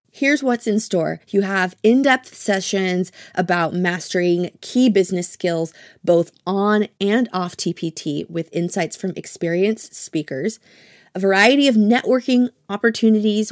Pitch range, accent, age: 175-220 Hz, American, 30-49